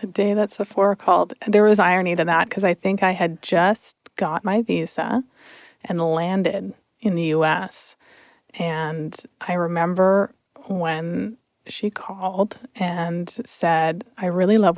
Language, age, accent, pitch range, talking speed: English, 30-49, American, 175-215 Hz, 140 wpm